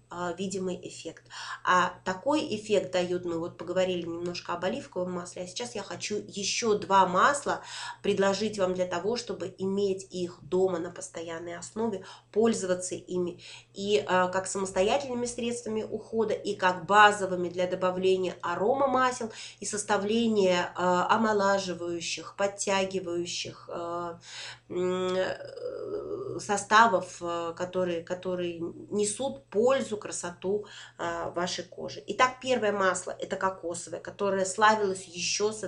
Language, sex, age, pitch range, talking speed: Russian, female, 20-39, 175-210 Hz, 110 wpm